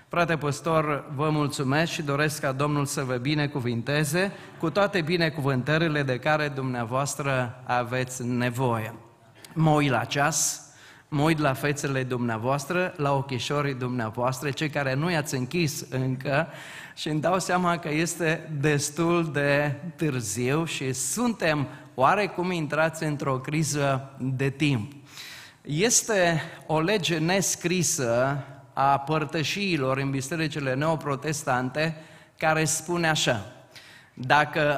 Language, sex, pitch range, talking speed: Romanian, male, 140-170 Hz, 115 wpm